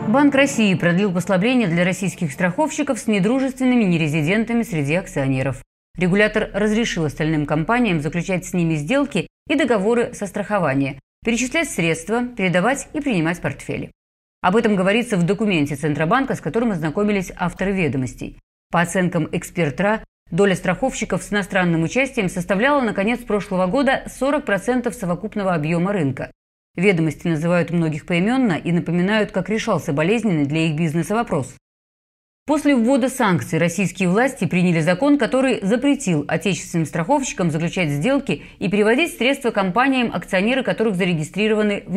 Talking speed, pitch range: 130 wpm, 170-230 Hz